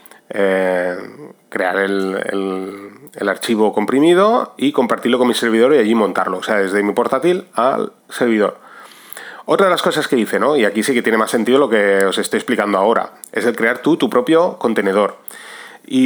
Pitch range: 105-140 Hz